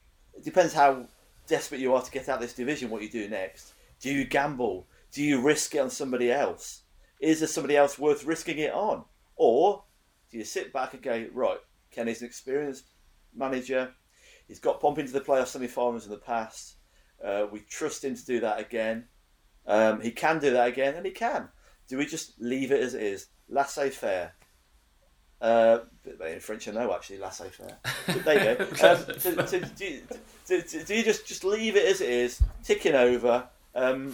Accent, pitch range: British, 120-185 Hz